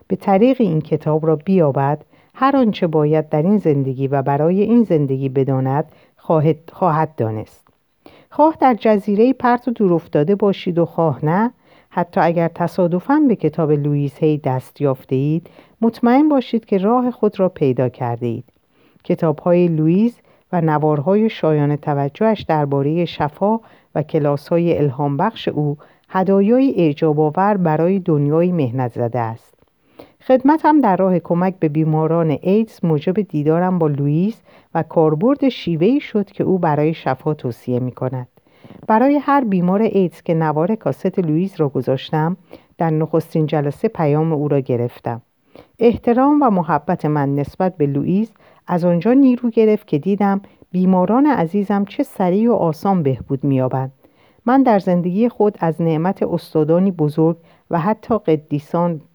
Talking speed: 140 wpm